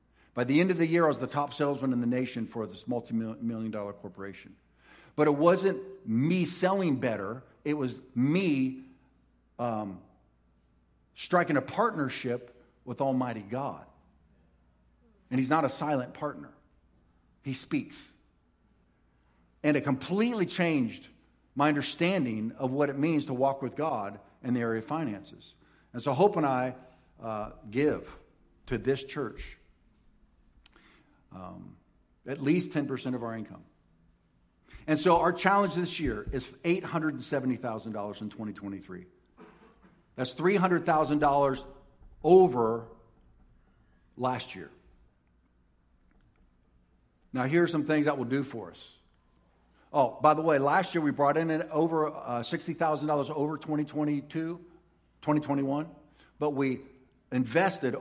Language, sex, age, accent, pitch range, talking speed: English, male, 50-69, American, 105-150 Hz, 125 wpm